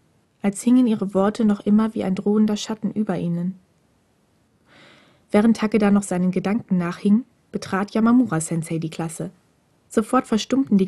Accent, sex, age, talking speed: German, female, 20-39, 140 wpm